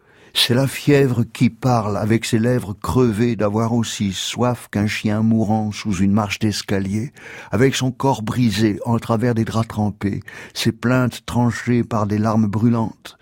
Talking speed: 160 wpm